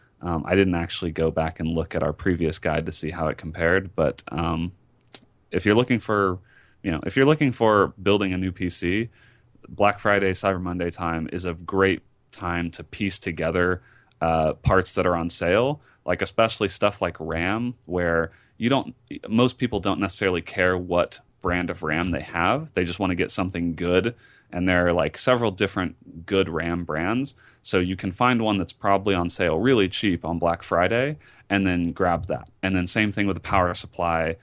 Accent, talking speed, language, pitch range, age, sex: American, 205 wpm, English, 85-105 Hz, 30-49, male